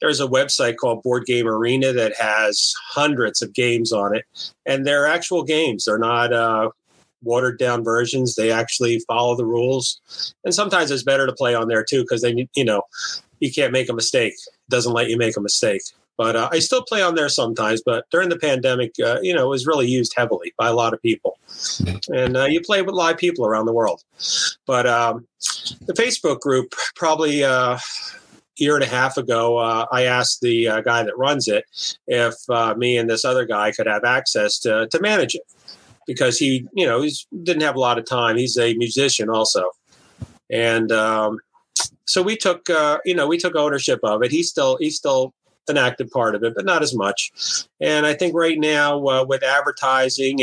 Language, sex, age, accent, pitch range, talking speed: English, male, 30-49, American, 115-155 Hz, 205 wpm